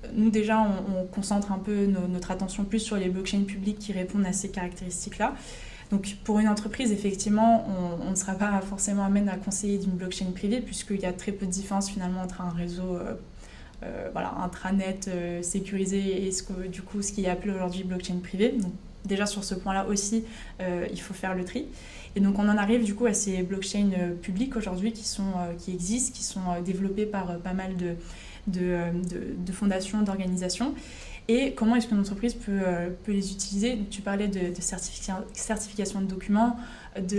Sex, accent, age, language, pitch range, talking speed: female, French, 20-39, French, 190-215 Hz, 210 wpm